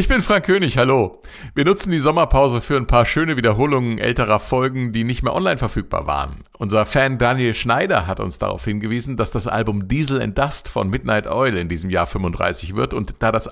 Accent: German